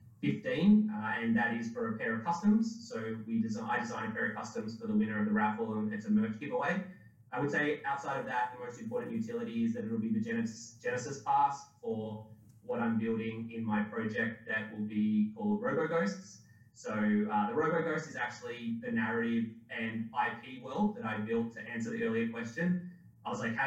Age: 20-39